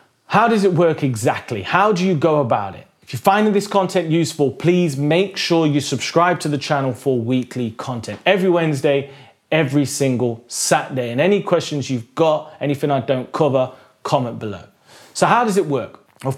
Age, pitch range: 30-49, 120-160 Hz